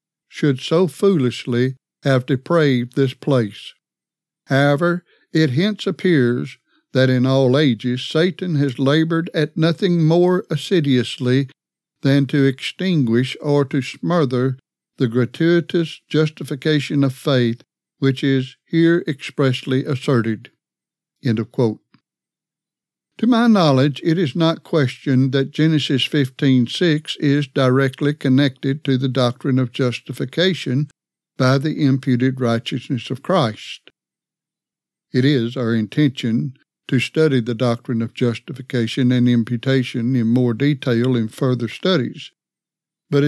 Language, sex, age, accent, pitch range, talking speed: English, male, 60-79, American, 125-155 Hz, 115 wpm